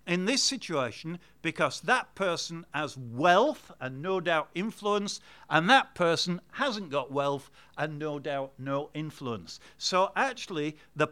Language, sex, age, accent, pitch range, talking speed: English, male, 50-69, British, 140-195 Hz, 140 wpm